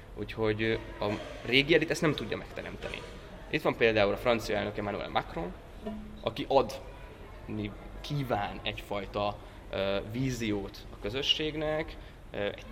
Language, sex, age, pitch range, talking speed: Hungarian, male, 20-39, 105-130 Hz, 115 wpm